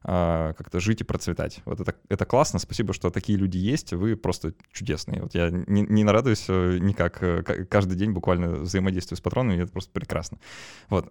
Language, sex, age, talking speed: Russian, male, 20-39, 160 wpm